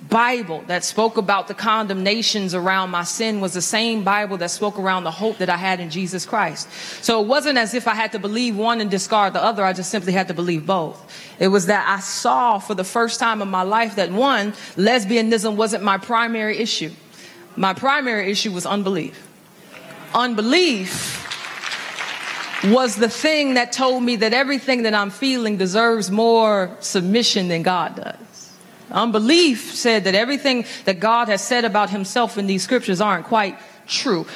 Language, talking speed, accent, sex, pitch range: English, 180 wpm, American, female, 195-245 Hz